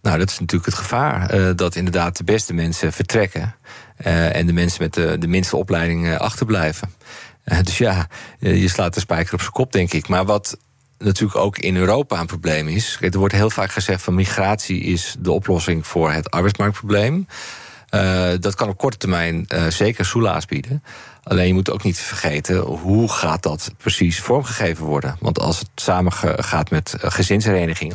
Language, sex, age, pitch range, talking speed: Dutch, male, 40-59, 85-105 Hz, 170 wpm